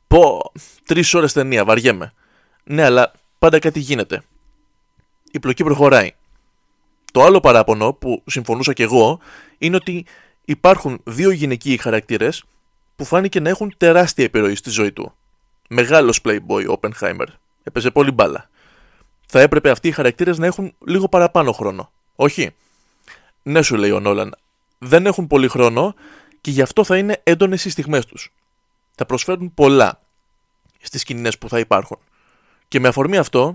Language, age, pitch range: Greek, 20-39, 125-170 Hz